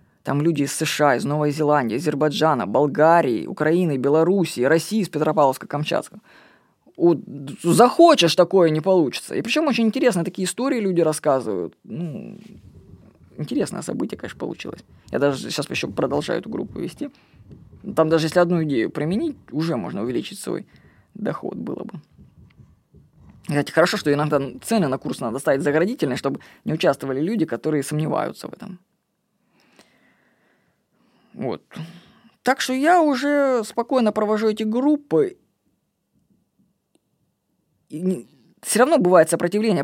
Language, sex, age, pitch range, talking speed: Russian, female, 20-39, 160-230 Hz, 130 wpm